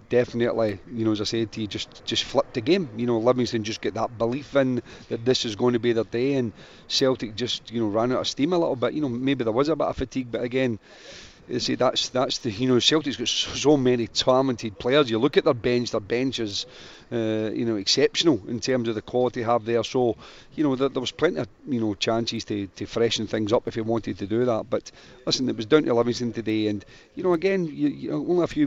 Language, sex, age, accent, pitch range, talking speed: English, male, 40-59, British, 115-135 Hz, 265 wpm